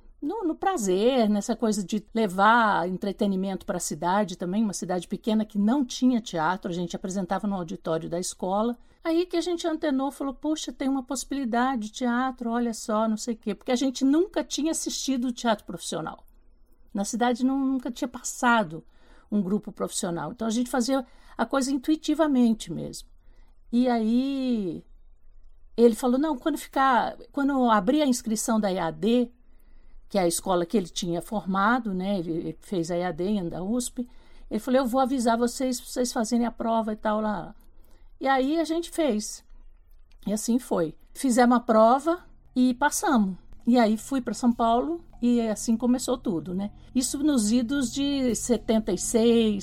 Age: 50-69